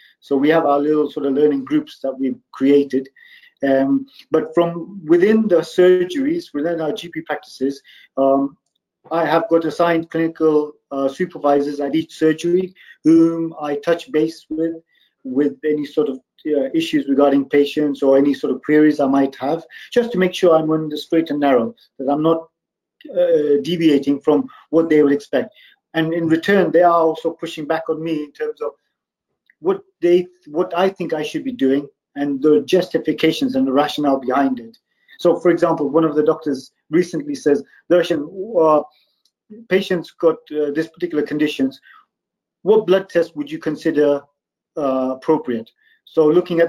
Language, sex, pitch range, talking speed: English, male, 145-175 Hz, 170 wpm